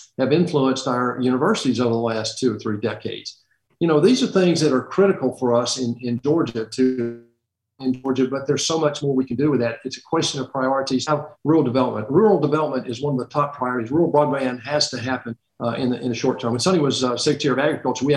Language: English